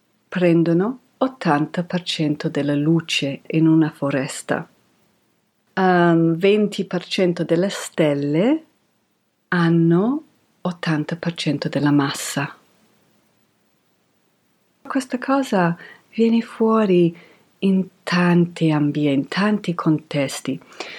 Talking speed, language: 70 wpm, Italian